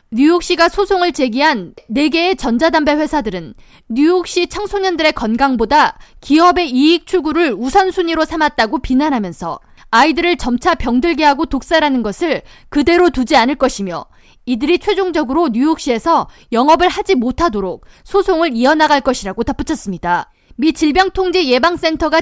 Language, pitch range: Korean, 255-350 Hz